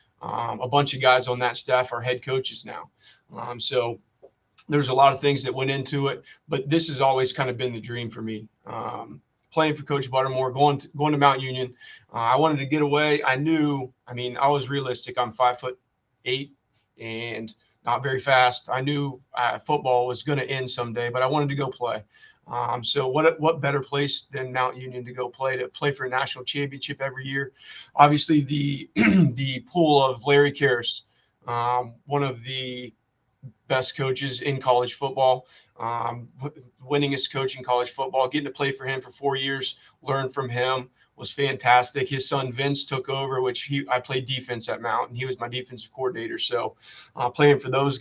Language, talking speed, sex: English, 200 wpm, male